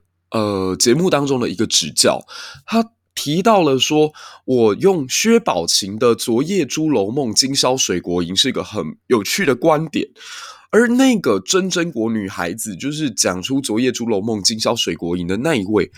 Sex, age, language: male, 20-39, Chinese